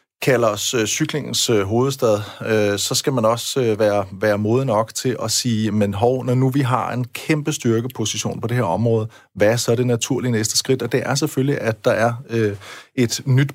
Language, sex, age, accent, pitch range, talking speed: Danish, male, 30-49, native, 110-135 Hz, 220 wpm